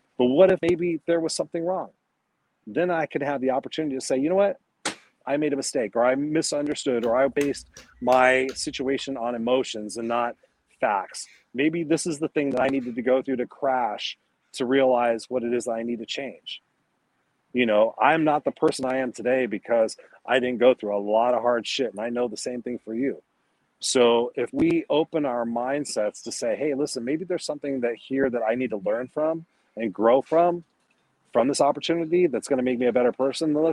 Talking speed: 215 wpm